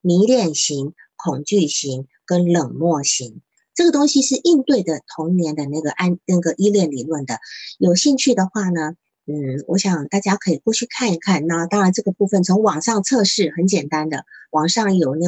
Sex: female